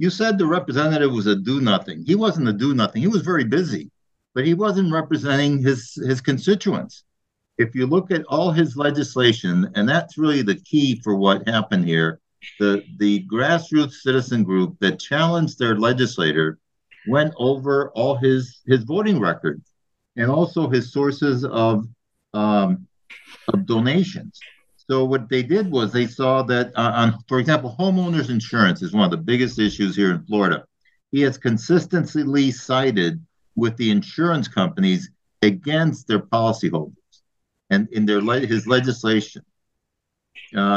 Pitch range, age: 115-150 Hz, 60-79